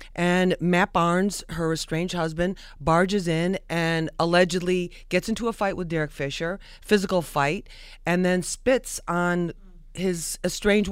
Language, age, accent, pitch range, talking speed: English, 40-59, American, 165-205 Hz, 135 wpm